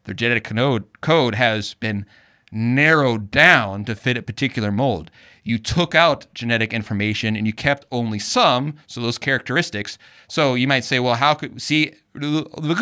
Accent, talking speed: American, 160 wpm